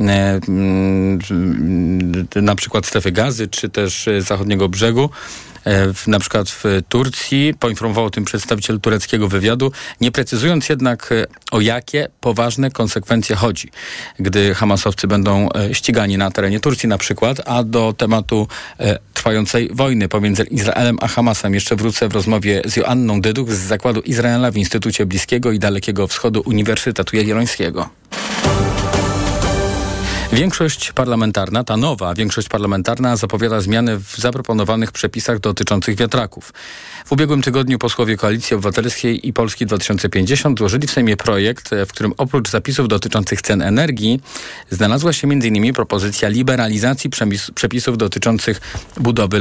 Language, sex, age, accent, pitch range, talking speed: Polish, male, 40-59, native, 100-120 Hz, 125 wpm